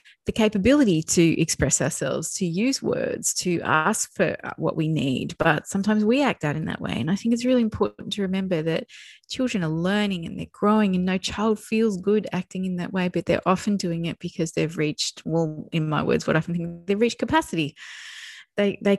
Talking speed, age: 210 wpm, 20-39